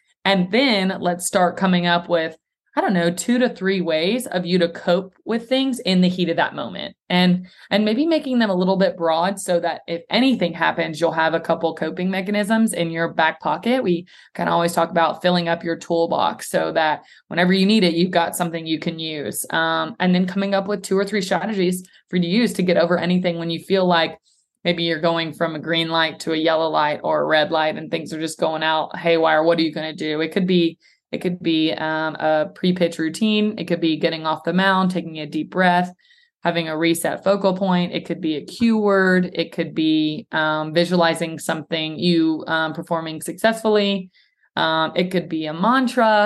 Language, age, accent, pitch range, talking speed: English, 20-39, American, 165-190 Hz, 220 wpm